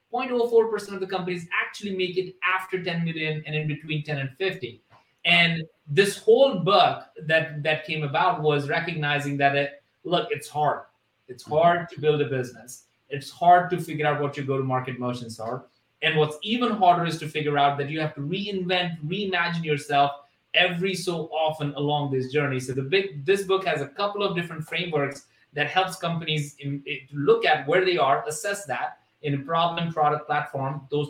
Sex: male